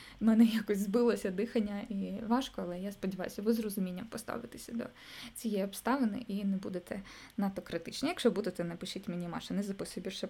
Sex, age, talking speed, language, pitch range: female, 20-39, 175 wpm, Ukrainian, 200-245 Hz